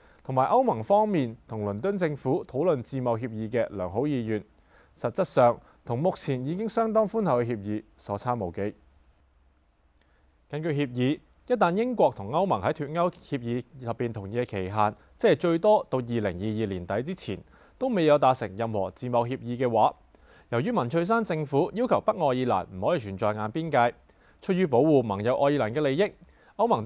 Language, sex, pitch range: Chinese, male, 105-150 Hz